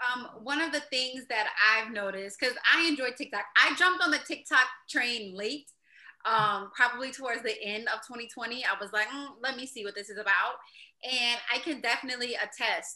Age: 20-39